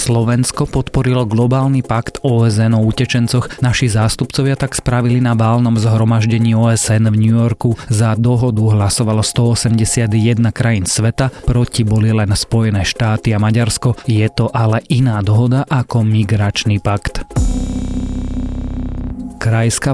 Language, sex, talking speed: Slovak, male, 120 wpm